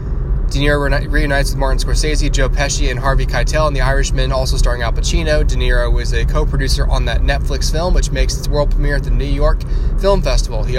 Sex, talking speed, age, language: male, 215 wpm, 20-39, English